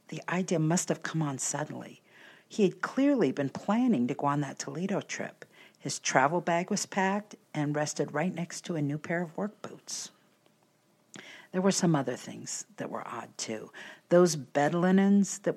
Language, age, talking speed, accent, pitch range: English, 50-69, 180 wpm, American, 145-195 Hz